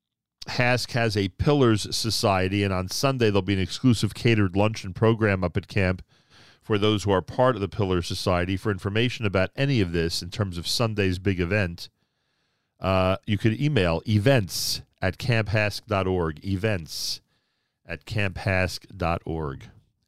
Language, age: English, 40-59